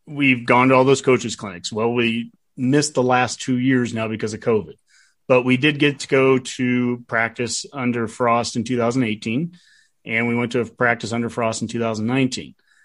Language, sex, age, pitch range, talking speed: English, male, 30-49, 115-130 Hz, 180 wpm